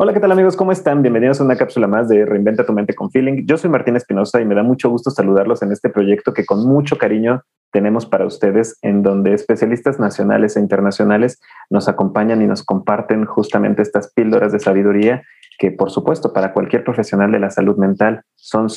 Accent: Mexican